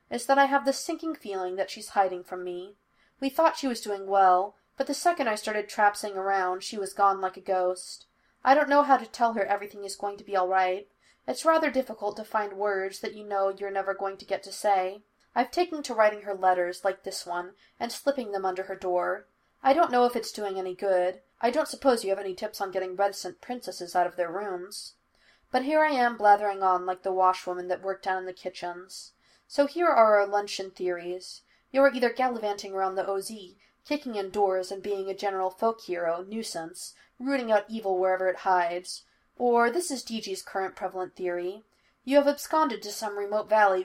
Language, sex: English, female